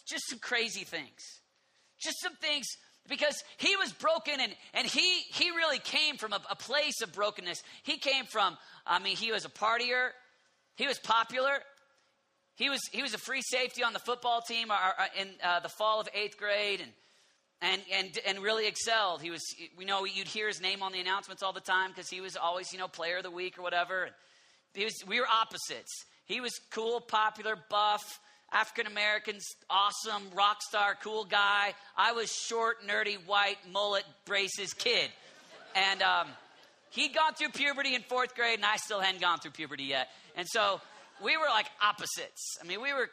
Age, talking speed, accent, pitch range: 40-59, 190 wpm, American, 195-270 Hz